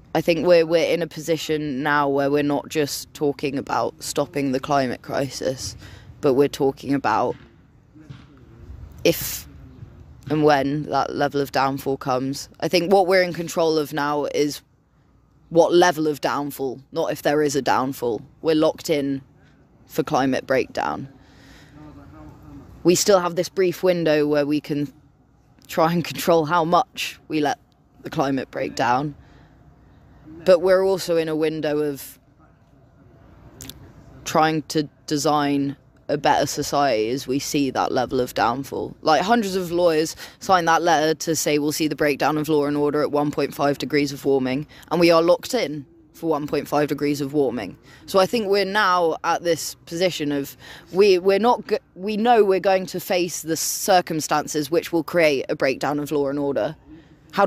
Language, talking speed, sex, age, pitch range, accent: English, 165 wpm, female, 20-39, 140-165 Hz, British